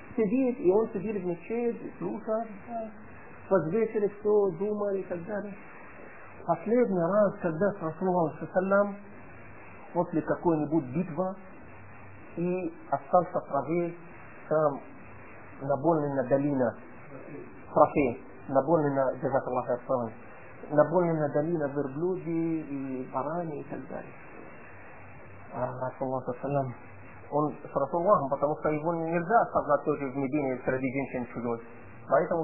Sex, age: male, 50-69